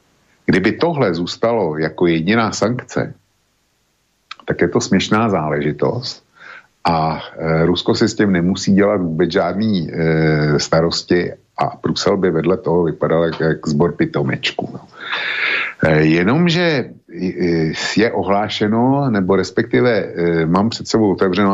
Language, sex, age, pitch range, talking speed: Slovak, male, 60-79, 85-105 Hz, 110 wpm